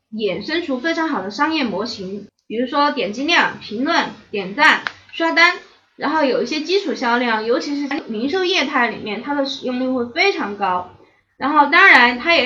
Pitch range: 230-305 Hz